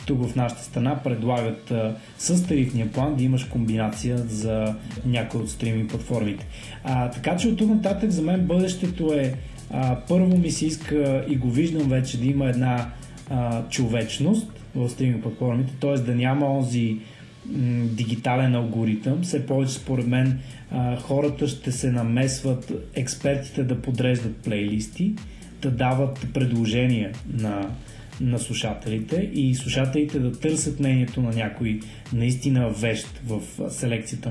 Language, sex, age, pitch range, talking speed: Bulgarian, male, 20-39, 120-145 Hz, 140 wpm